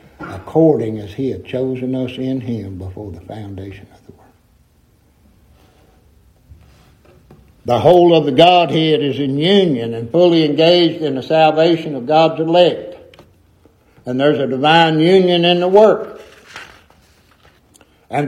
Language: English